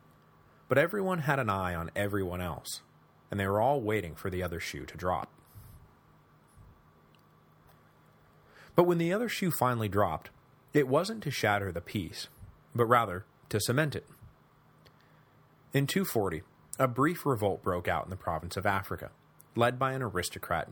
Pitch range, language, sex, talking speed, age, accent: 90-125 Hz, English, male, 155 wpm, 30-49, American